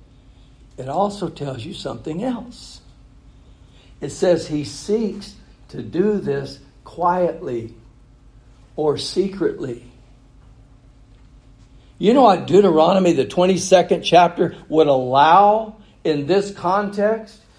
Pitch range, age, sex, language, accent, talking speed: 140-205 Hz, 60-79, male, English, American, 95 wpm